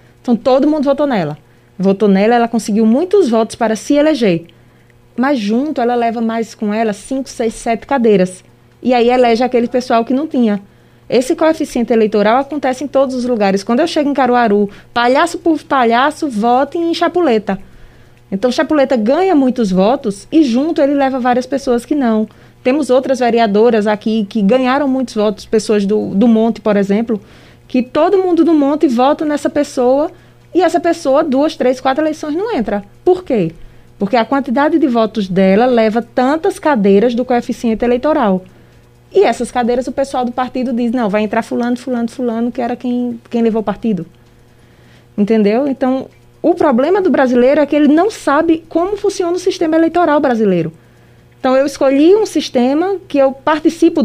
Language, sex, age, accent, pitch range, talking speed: Portuguese, female, 20-39, Brazilian, 225-295 Hz, 175 wpm